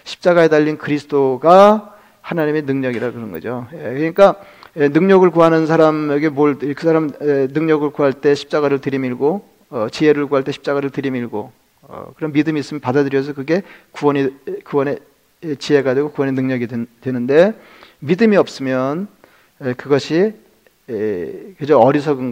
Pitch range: 135-170 Hz